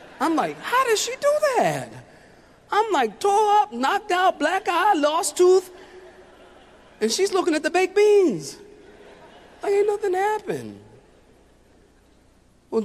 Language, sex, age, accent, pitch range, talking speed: English, male, 40-59, American, 165-245 Hz, 135 wpm